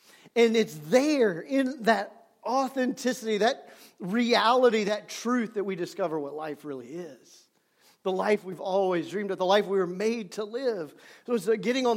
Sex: male